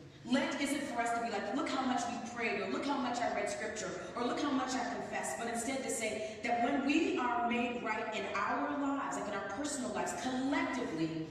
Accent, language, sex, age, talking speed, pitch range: American, English, female, 30-49, 235 wpm, 195-270 Hz